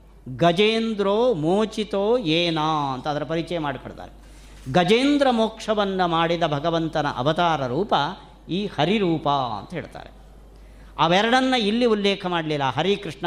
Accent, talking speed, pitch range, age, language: native, 100 wpm, 150-205 Hz, 40-59, Kannada